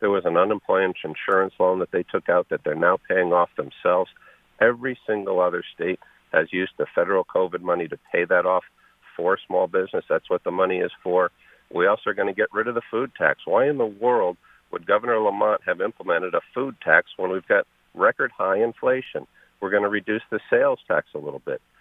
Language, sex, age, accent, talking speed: English, male, 50-69, American, 215 wpm